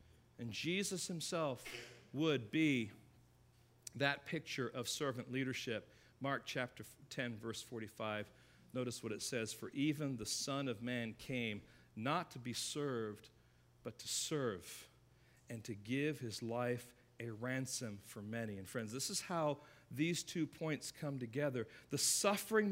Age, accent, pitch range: 40-59, American, 110-160 Hz